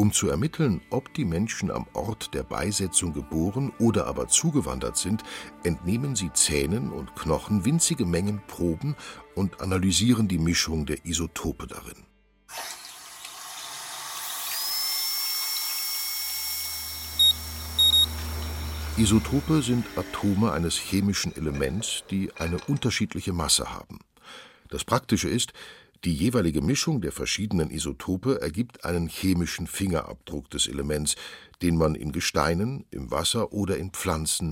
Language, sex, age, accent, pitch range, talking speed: German, male, 60-79, German, 80-105 Hz, 115 wpm